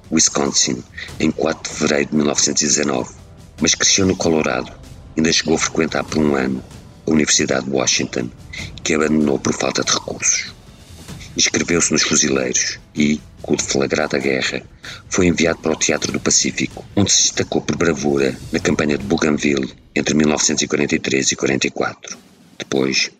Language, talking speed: Portuguese, 145 wpm